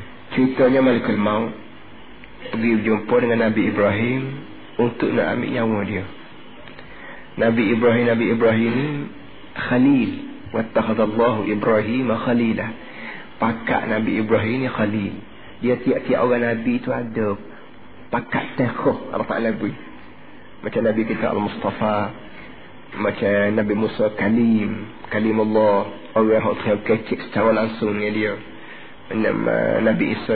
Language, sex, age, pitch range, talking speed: Malayalam, male, 40-59, 110-135 Hz, 110 wpm